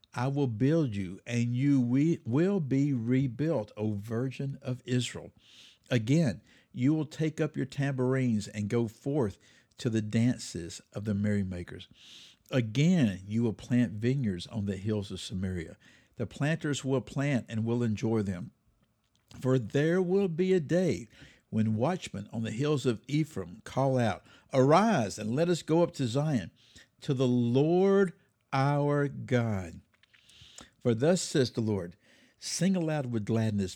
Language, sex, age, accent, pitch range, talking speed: English, male, 60-79, American, 110-145 Hz, 150 wpm